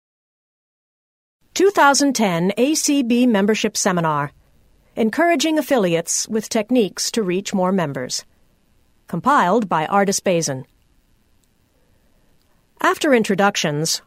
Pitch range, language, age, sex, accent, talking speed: 185-255 Hz, English, 50-69, female, American, 75 wpm